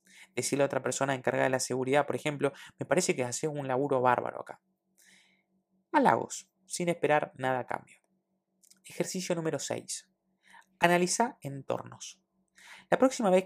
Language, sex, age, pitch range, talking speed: Spanish, male, 20-39, 130-185 Hz, 145 wpm